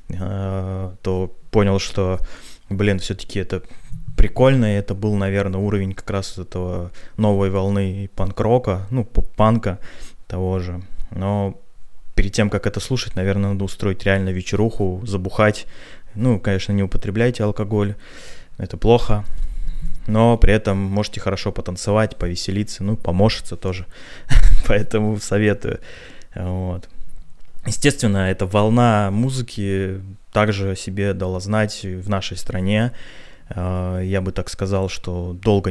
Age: 20-39